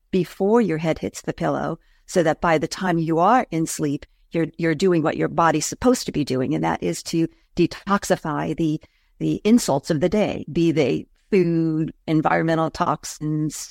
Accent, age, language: American, 50-69, English